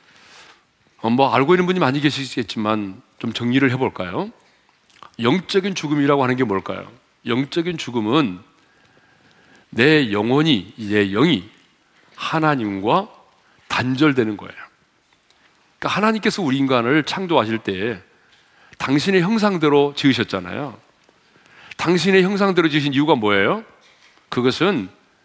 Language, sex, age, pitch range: Korean, male, 40-59, 120-170 Hz